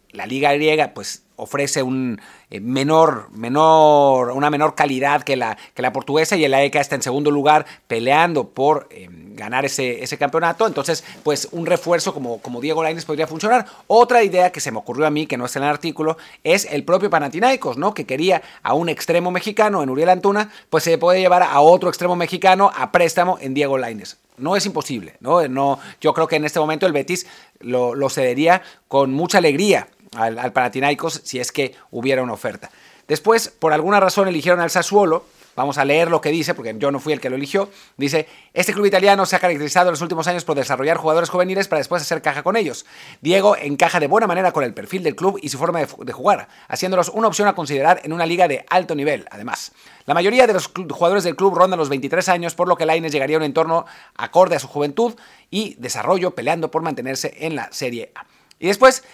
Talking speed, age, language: 215 wpm, 40-59, Spanish